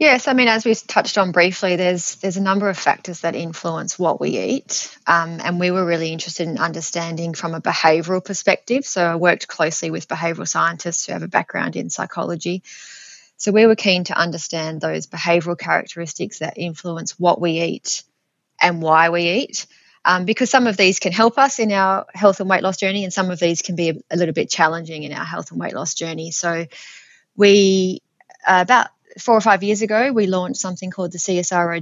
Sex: female